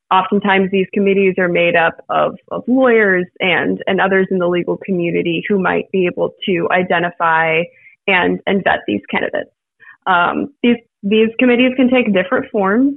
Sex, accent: female, American